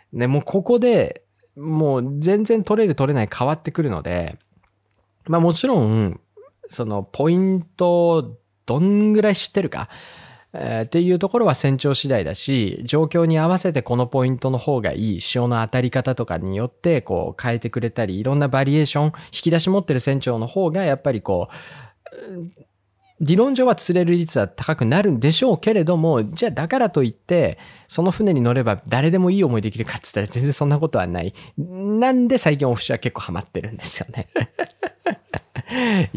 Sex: male